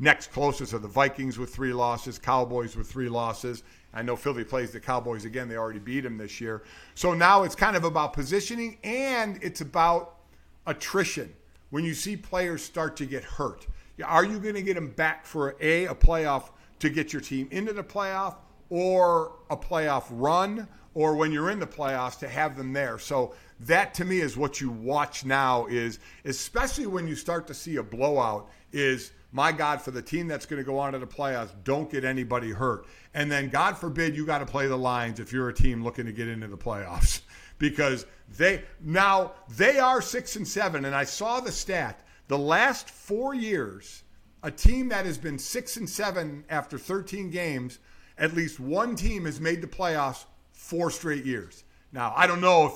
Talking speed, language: 200 wpm, English